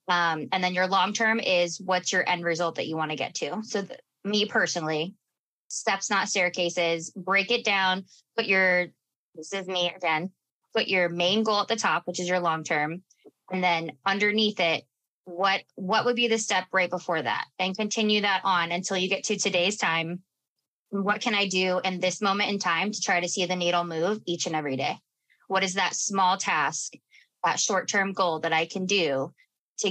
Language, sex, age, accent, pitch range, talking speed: English, female, 20-39, American, 175-215 Hz, 195 wpm